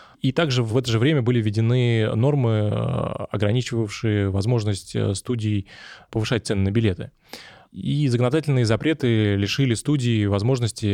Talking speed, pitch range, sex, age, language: 120 wpm, 105-125 Hz, male, 20-39, Russian